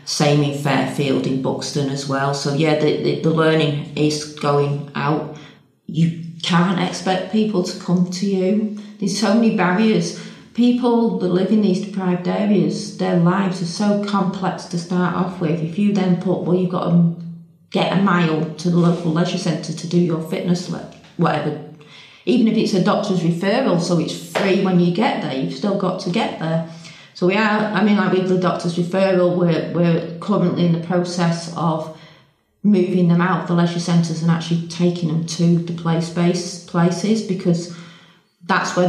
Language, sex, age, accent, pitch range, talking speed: English, female, 40-59, British, 165-185 Hz, 185 wpm